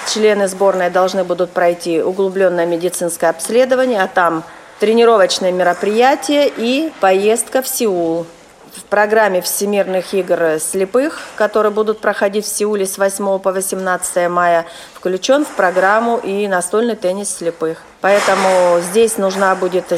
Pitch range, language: 175-205 Hz, Russian